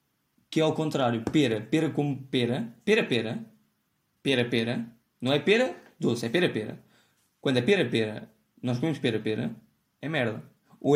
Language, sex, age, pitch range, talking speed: Portuguese, male, 20-39, 120-160 Hz, 130 wpm